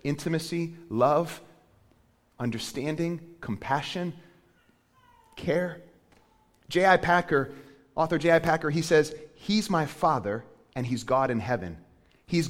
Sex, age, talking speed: male, 30-49, 100 wpm